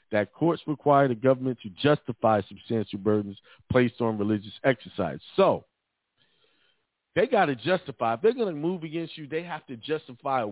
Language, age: English, 50-69